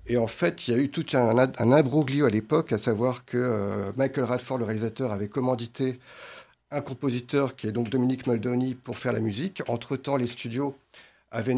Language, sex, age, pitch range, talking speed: French, male, 50-69, 115-135 Hz, 200 wpm